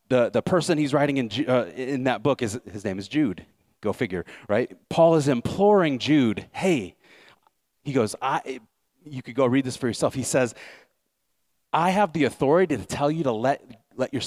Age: 30-49